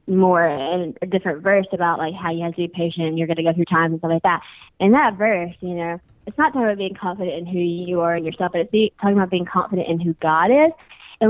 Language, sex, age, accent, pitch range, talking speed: English, female, 20-39, American, 170-195 Hz, 275 wpm